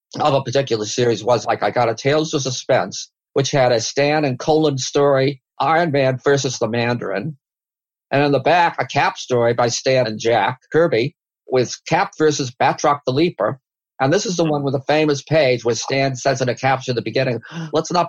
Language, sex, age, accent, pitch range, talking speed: English, male, 50-69, American, 125-150 Hz, 205 wpm